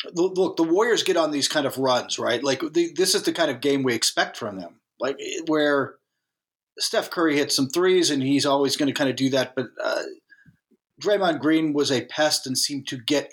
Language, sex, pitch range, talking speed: English, male, 135-185 Hz, 225 wpm